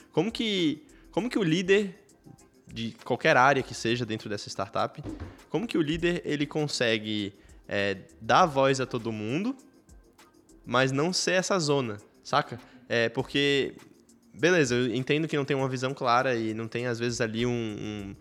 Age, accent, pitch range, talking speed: 20-39, Brazilian, 120-160 Hz, 170 wpm